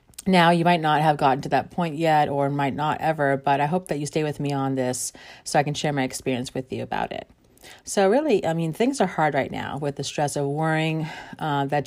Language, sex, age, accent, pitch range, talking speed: English, female, 30-49, American, 145-165 Hz, 255 wpm